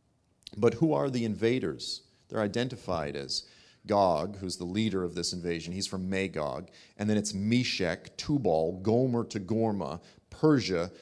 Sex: male